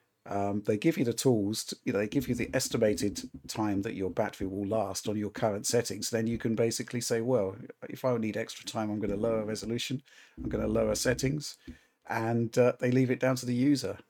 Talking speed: 215 wpm